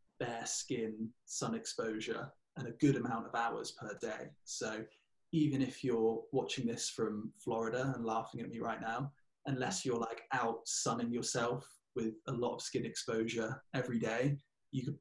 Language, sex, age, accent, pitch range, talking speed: English, male, 20-39, British, 115-130 Hz, 170 wpm